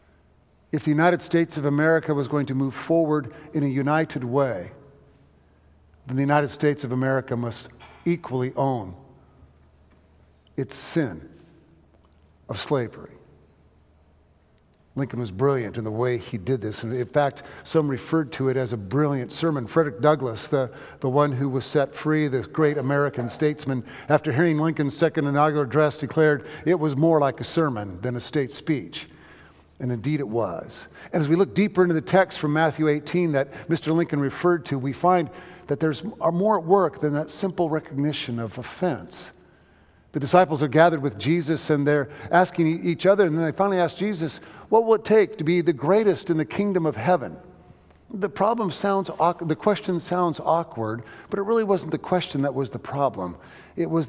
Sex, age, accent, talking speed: male, 50-69, American, 175 wpm